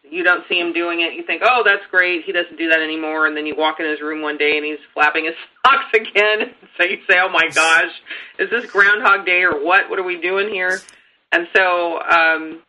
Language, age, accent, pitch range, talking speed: English, 30-49, American, 160-215 Hz, 240 wpm